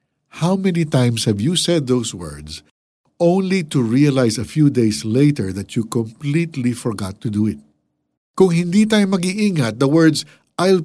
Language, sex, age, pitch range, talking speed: Filipino, male, 50-69, 120-190 Hz, 160 wpm